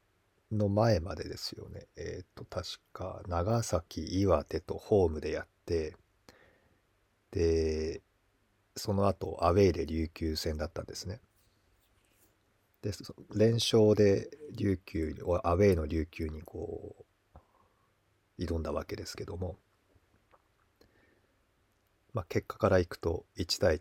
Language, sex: Japanese, male